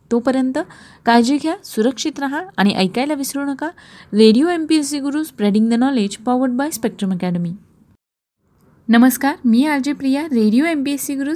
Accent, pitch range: native, 215-265 Hz